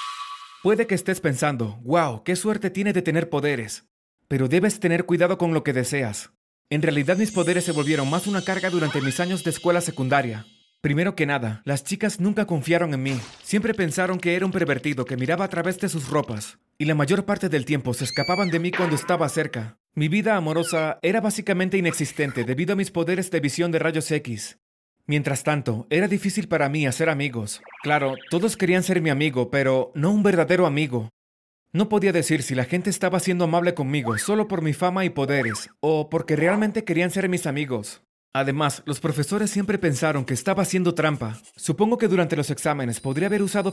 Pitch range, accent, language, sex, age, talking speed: 140-185 Hz, Mexican, Spanish, male, 30-49, 195 wpm